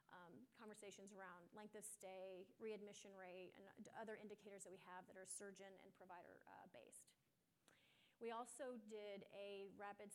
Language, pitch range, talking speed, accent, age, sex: English, 190-215 Hz, 155 wpm, American, 30-49, female